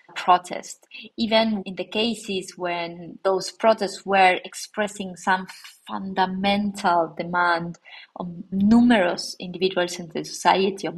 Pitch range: 175-210 Hz